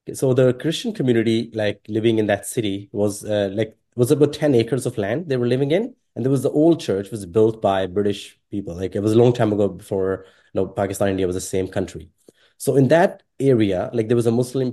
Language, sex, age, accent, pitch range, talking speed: English, male, 30-49, Indian, 105-125 Hz, 235 wpm